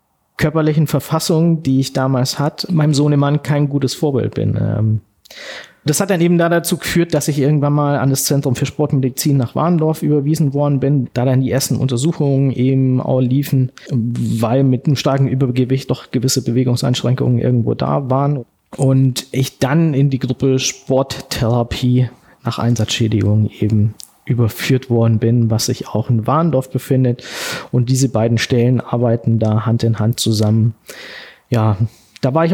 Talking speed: 155 wpm